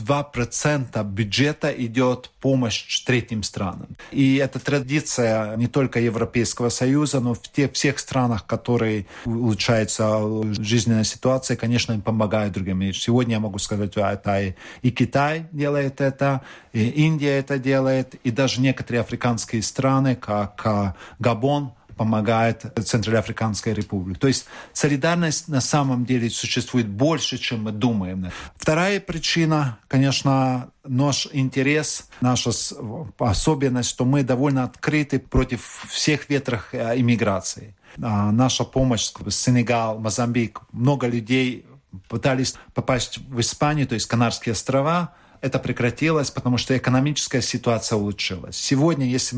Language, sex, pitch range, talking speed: Russian, male, 110-135 Hz, 125 wpm